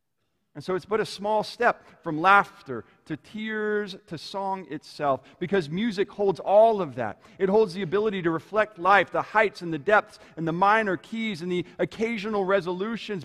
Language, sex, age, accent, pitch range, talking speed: English, male, 40-59, American, 165-215 Hz, 180 wpm